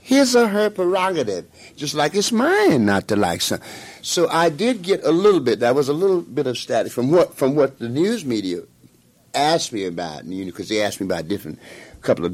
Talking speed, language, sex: 235 wpm, English, male